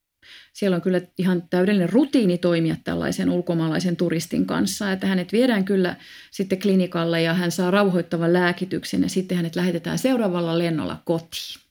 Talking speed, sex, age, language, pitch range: 150 wpm, female, 30-49, Finnish, 170-205 Hz